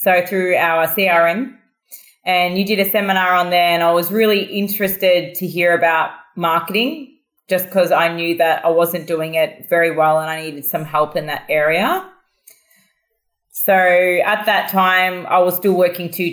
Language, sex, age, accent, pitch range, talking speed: English, female, 20-39, Australian, 160-185 Hz, 175 wpm